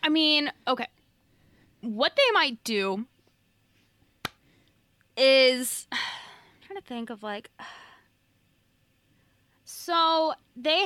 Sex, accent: female, American